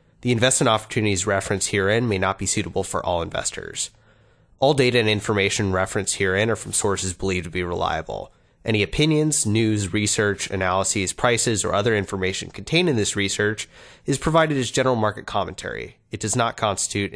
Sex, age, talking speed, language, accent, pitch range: male, 30-49, 170 wpm, English, American, 95-120 Hz